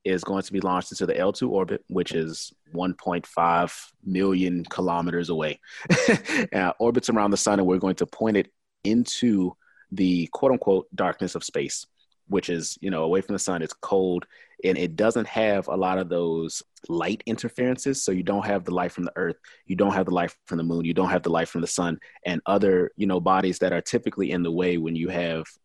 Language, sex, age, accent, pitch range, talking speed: English, male, 30-49, American, 90-100 Hz, 215 wpm